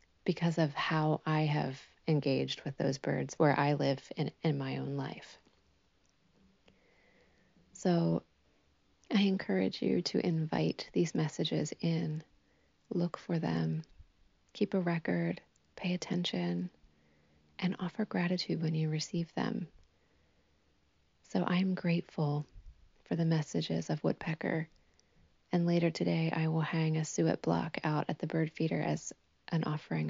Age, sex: 30-49, female